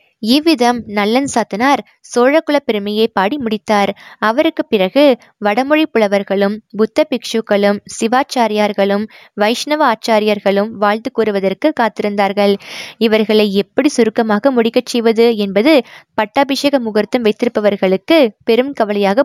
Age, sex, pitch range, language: 20-39, female, 210-260 Hz, Tamil